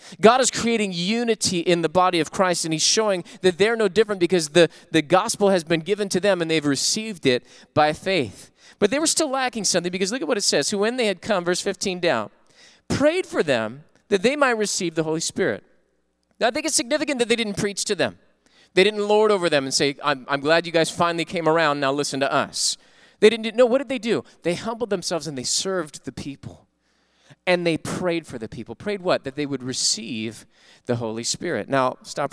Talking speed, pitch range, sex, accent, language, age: 230 wpm, 155-215 Hz, male, American, English, 30-49